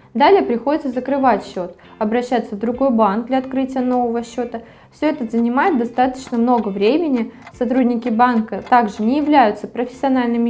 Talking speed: 135 wpm